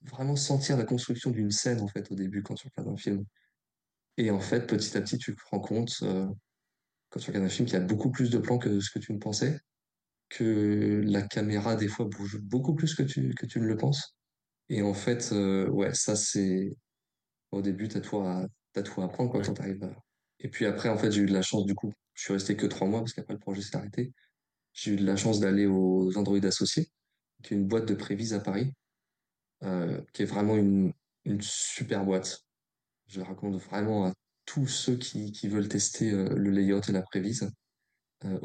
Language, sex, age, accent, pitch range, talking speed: French, male, 20-39, French, 95-115 Hz, 220 wpm